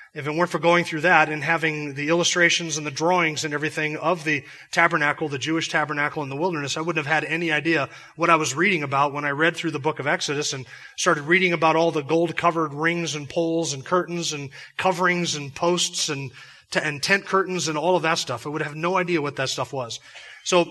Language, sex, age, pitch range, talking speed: English, male, 30-49, 150-180 Hz, 230 wpm